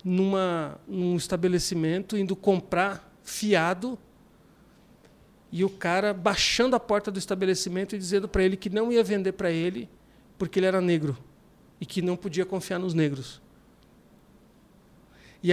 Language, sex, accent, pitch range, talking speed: Portuguese, male, Brazilian, 180-215 Hz, 140 wpm